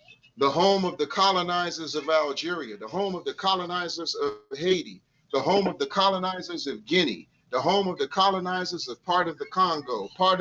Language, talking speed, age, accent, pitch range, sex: English, 185 wpm, 40-59, American, 155-190 Hz, male